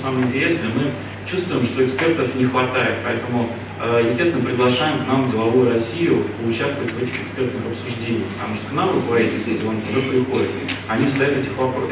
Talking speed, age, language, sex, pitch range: 145 wpm, 30-49, Russian, male, 115-130 Hz